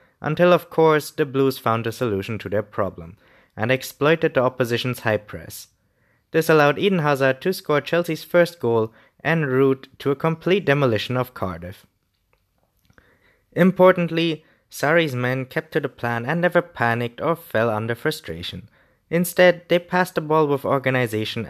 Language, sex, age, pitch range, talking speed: English, male, 20-39, 115-160 Hz, 155 wpm